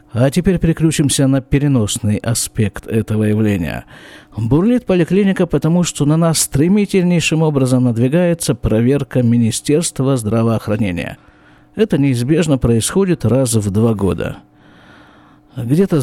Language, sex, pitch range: Russian, male, 115-155 Hz